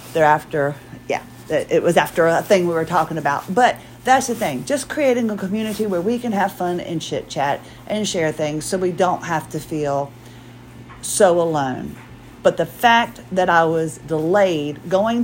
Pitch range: 145-210 Hz